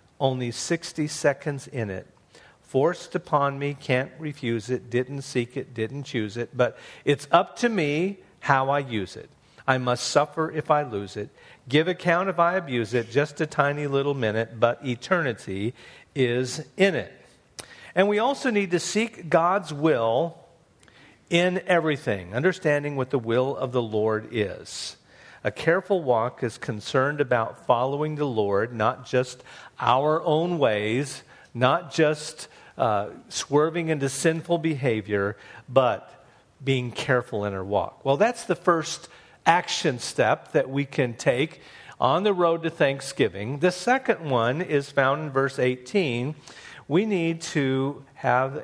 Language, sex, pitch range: English, male, 125-165 Hz